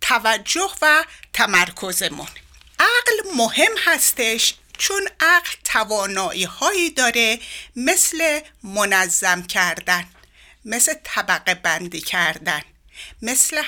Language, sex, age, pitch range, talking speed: Persian, female, 60-79, 190-320 Hz, 85 wpm